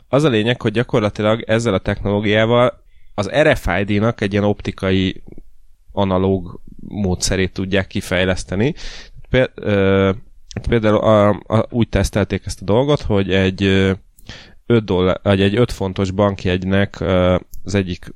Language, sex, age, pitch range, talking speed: Hungarian, male, 20-39, 90-105 Hz, 110 wpm